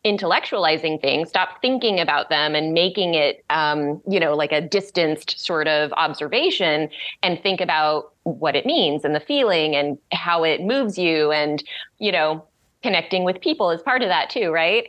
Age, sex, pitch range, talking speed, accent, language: 30-49, female, 160-200 Hz, 175 wpm, American, English